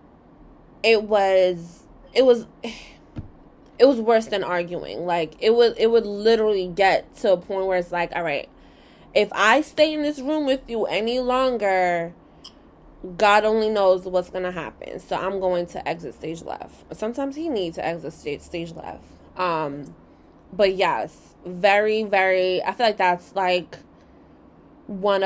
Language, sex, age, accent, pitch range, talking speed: English, female, 20-39, American, 165-200 Hz, 155 wpm